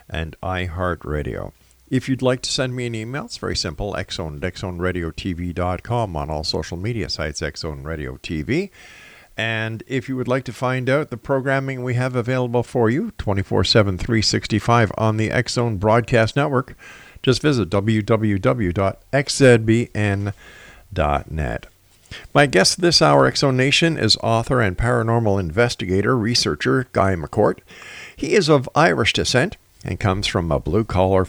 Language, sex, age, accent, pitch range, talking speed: English, male, 50-69, American, 95-125 Hz, 140 wpm